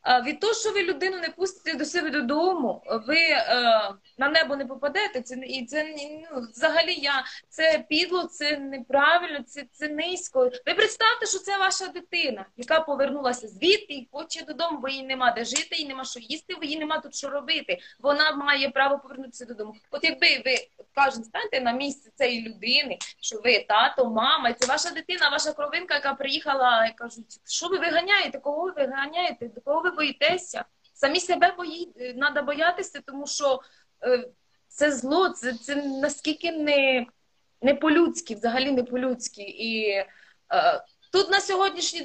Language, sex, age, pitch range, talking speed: Ukrainian, female, 20-39, 255-335 Hz, 165 wpm